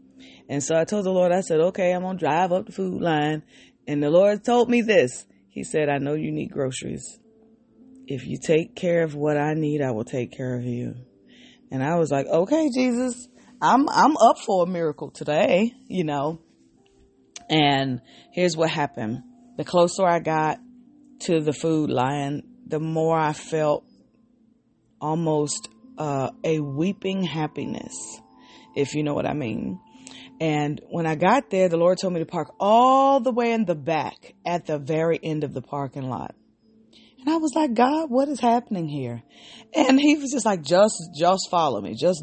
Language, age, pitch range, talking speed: English, 30-49, 145-225 Hz, 185 wpm